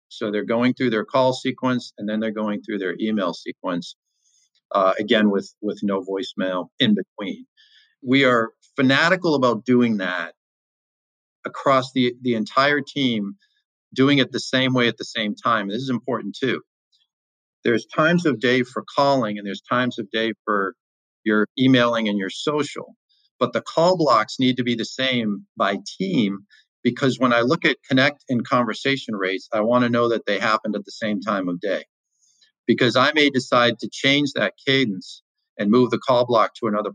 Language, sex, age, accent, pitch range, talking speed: English, male, 50-69, American, 110-140 Hz, 180 wpm